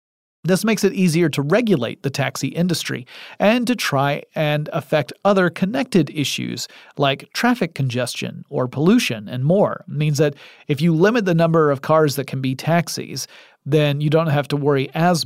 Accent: American